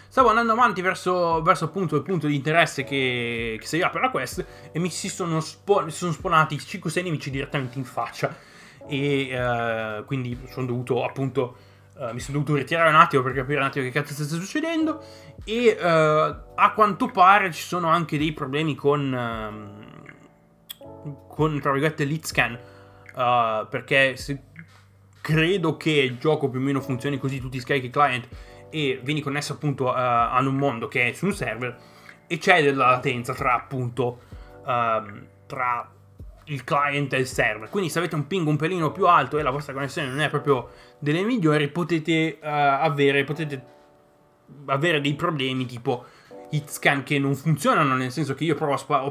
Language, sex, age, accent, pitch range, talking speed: Italian, male, 20-39, native, 125-160 Hz, 180 wpm